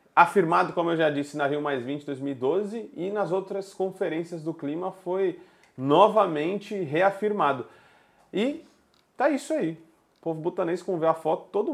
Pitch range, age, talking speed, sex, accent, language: 150-205 Hz, 30-49, 160 wpm, male, Brazilian, Portuguese